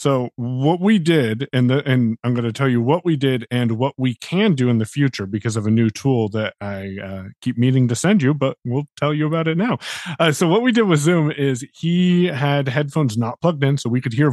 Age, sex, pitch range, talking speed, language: 30-49, male, 115-150 Hz, 255 wpm, English